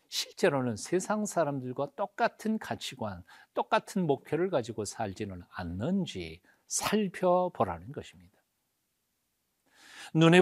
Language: Korean